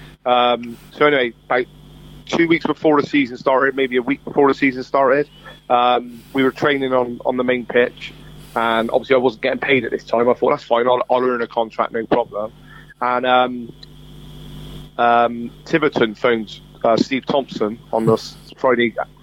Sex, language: male, English